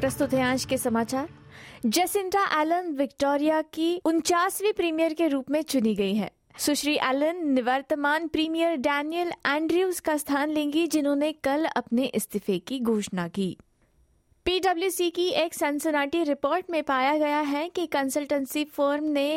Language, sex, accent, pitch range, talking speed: Hindi, female, native, 255-315 Hz, 145 wpm